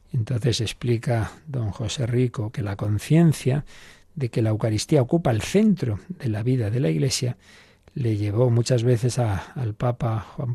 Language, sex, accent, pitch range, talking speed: Spanish, male, Spanish, 110-145 Hz, 165 wpm